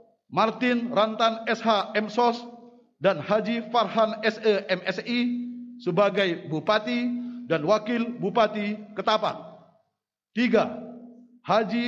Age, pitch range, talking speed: 50-69, 195-235 Hz, 85 wpm